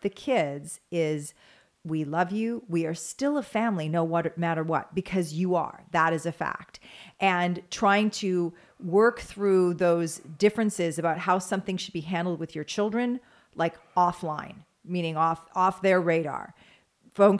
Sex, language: female, English